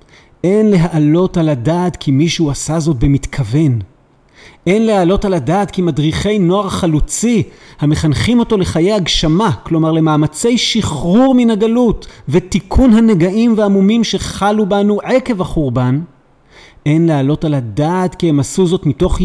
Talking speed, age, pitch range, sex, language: 130 wpm, 40-59, 145-185 Hz, male, Hebrew